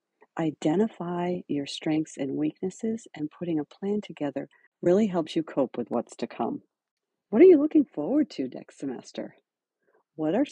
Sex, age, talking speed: female, 50-69, 160 wpm